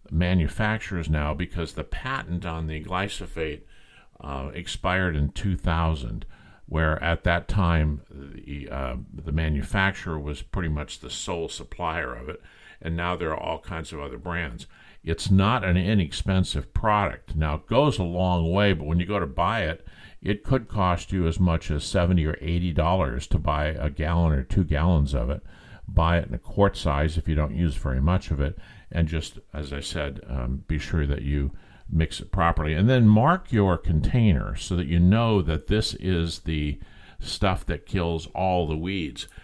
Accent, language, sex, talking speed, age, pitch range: American, English, male, 185 wpm, 50-69, 75-95 Hz